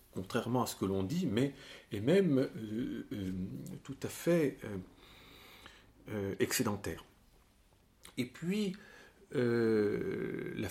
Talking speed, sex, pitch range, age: 120 wpm, male, 110-150 Hz, 50-69